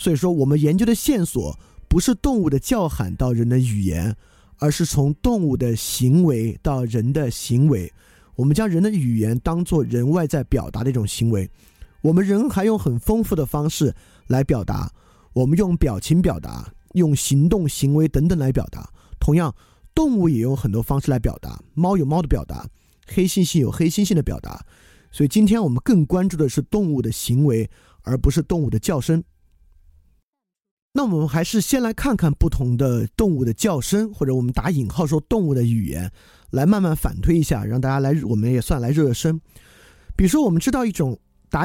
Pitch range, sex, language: 120-175 Hz, male, Chinese